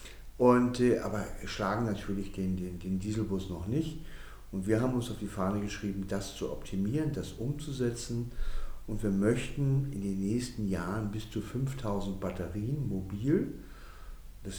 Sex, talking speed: male, 150 wpm